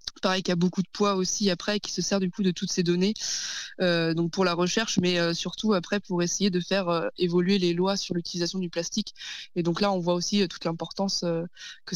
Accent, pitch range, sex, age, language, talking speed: French, 170-195 Hz, female, 20-39, French, 245 wpm